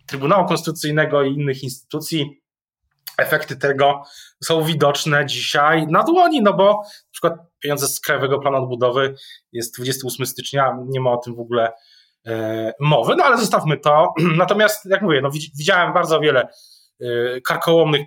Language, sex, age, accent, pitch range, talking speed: Polish, male, 20-39, native, 140-180 Hz, 150 wpm